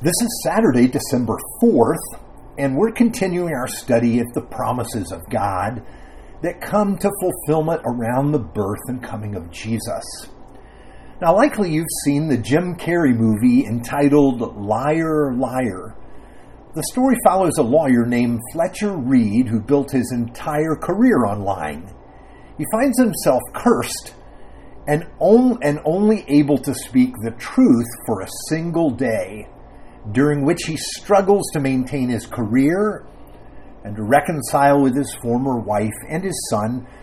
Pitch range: 115-165 Hz